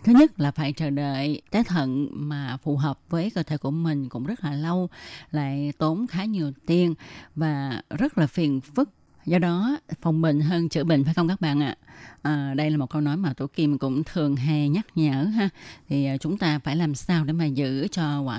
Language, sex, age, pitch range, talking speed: Vietnamese, female, 20-39, 145-175 Hz, 220 wpm